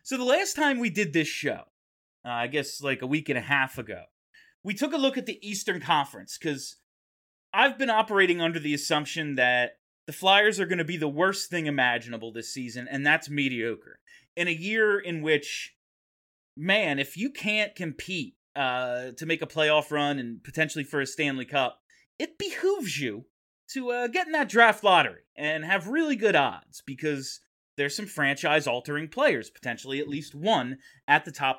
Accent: American